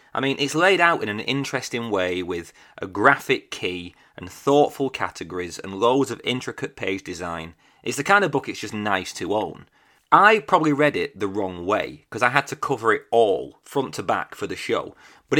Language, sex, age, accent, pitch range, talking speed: English, male, 30-49, British, 95-145 Hz, 205 wpm